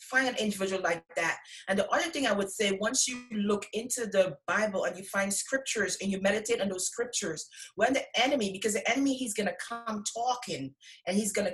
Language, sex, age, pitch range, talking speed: English, female, 30-49, 185-230 Hz, 215 wpm